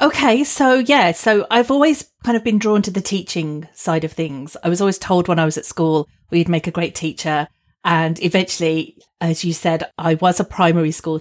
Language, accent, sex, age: English, British, female, 40-59